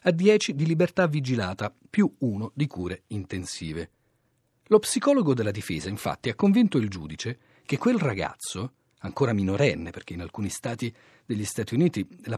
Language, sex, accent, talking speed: Italian, male, native, 155 wpm